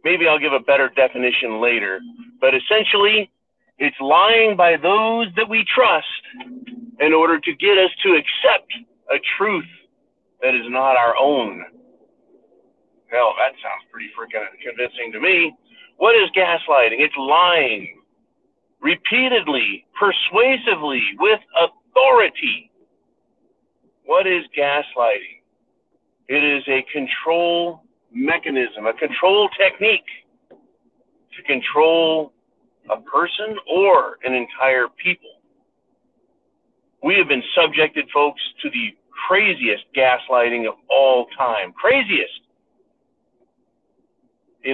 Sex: male